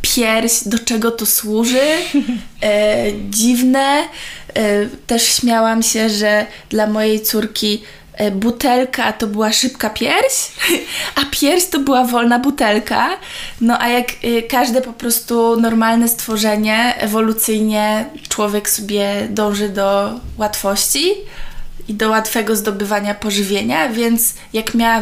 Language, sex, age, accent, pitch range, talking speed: Polish, female, 20-39, native, 215-250 Hz, 110 wpm